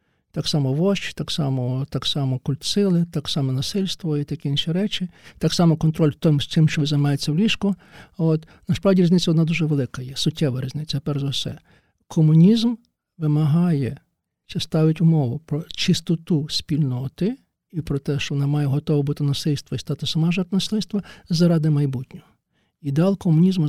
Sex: male